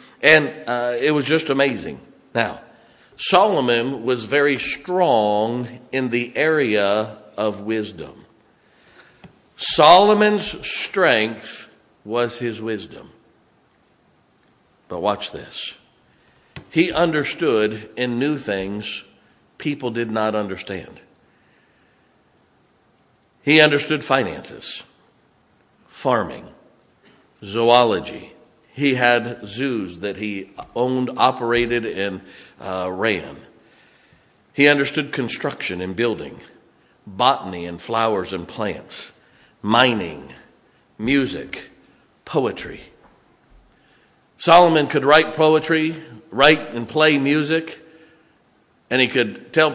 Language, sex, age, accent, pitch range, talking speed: English, male, 50-69, American, 110-150 Hz, 90 wpm